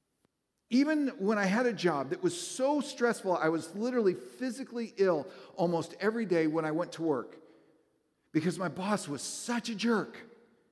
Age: 50-69